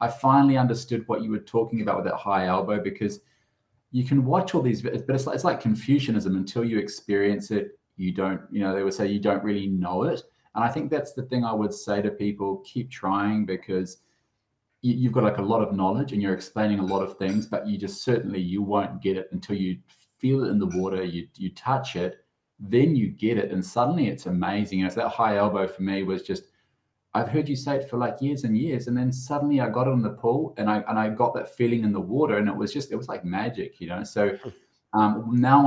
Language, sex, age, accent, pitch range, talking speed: English, male, 20-39, Australian, 100-120 Hz, 250 wpm